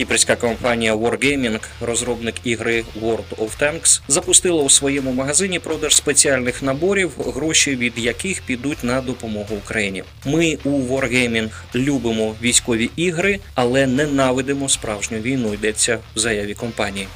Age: 20-39